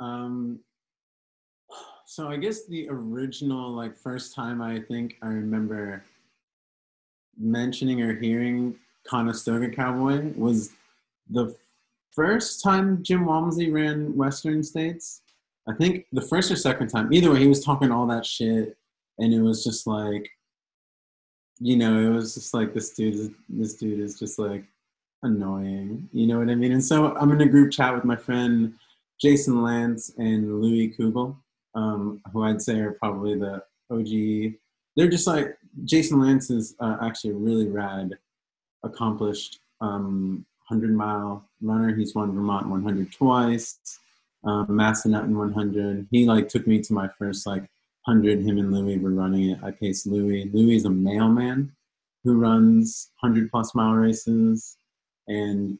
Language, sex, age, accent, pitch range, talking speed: English, male, 20-39, American, 105-125 Hz, 150 wpm